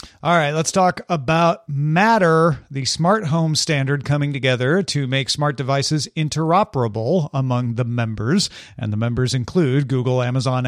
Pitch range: 125-165 Hz